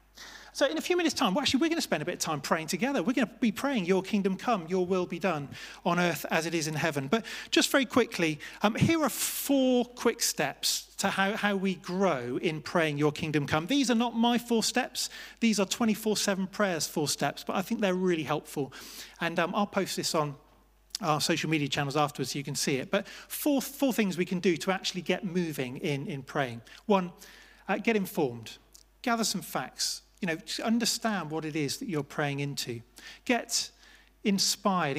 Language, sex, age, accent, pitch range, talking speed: English, male, 30-49, British, 155-215 Hz, 215 wpm